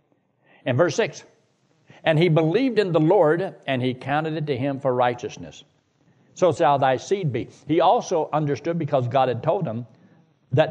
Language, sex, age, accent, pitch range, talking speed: English, male, 60-79, American, 130-165 Hz, 175 wpm